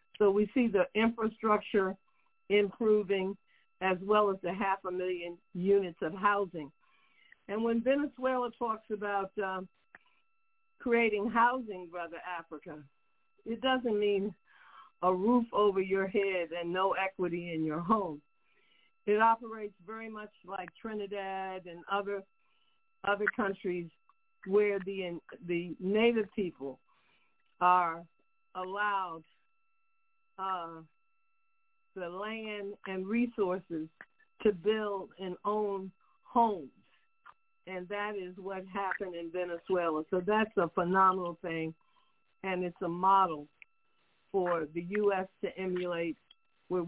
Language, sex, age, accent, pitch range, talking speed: English, female, 50-69, American, 180-225 Hz, 115 wpm